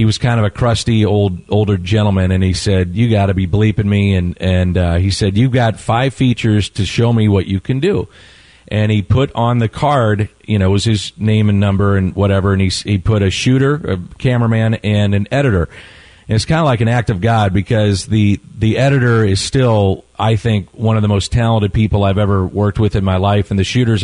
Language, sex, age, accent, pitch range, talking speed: English, male, 40-59, American, 100-115 Hz, 235 wpm